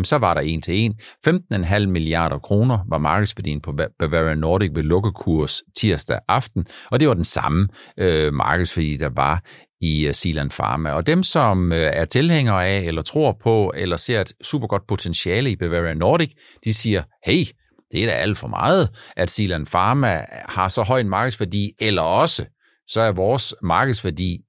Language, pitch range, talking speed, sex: Danish, 95-130 Hz, 175 wpm, male